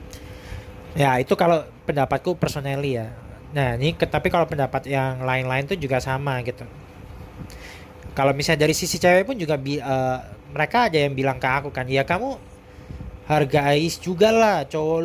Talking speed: 165 wpm